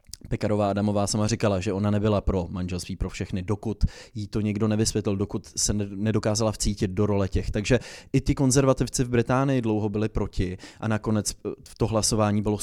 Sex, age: male, 20-39